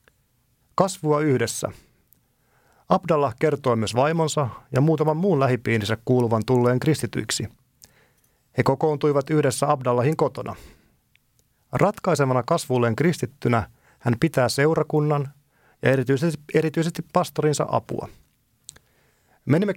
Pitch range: 120-155 Hz